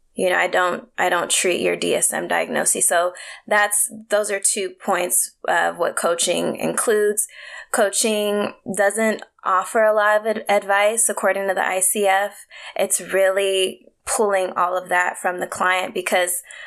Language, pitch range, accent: English, 180-205 Hz, American